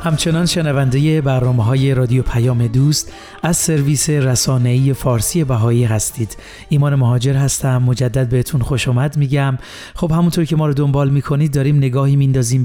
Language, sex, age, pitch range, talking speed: Persian, male, 40-59, 125-150 Hz, 140 wpm